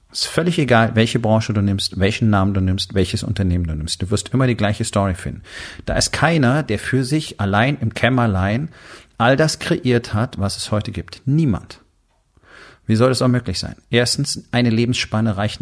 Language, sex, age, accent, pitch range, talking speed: German, male, 40-59, German, 100-120 Hz, 195 wpm